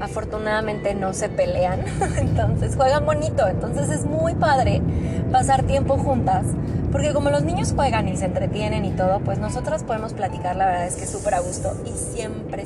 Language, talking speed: Spanish, 180 wpm